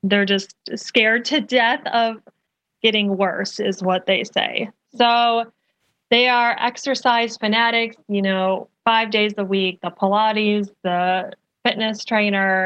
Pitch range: 190-230 Hz